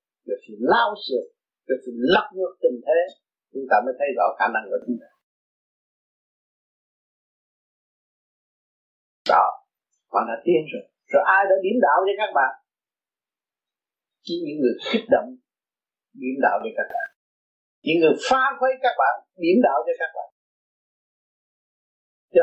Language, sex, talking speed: Vietnamese, male, 145 wpm